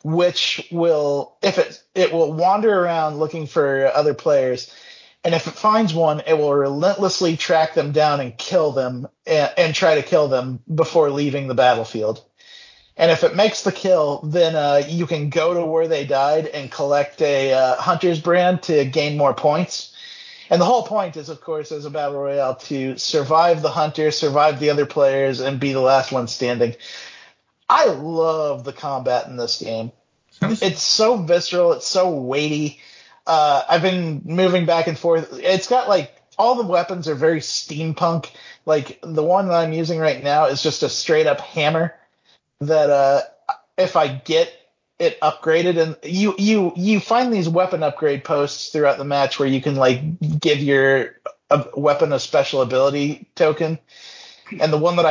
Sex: male